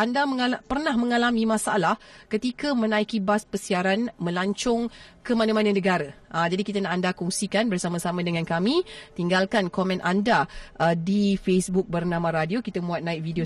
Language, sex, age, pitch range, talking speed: Malay, female, 30-49, 175-215 Hz, 150 wpm